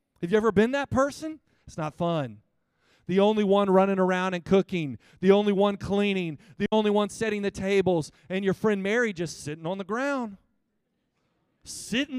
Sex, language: male, English